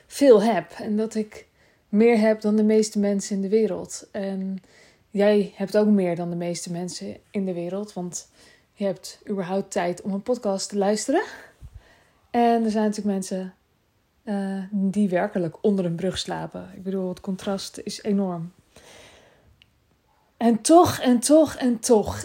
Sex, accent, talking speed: female, Dutch, 160 wpm